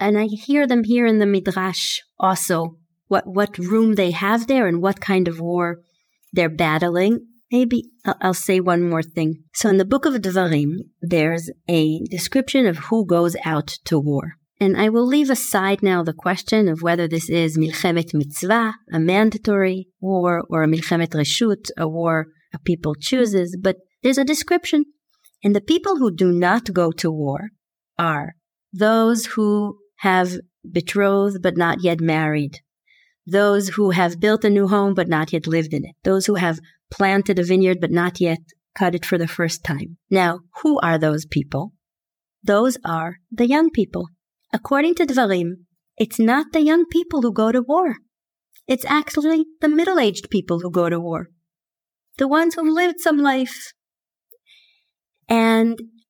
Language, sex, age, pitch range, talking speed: English, female, 40-59, 170-230 Hz, 170 wpm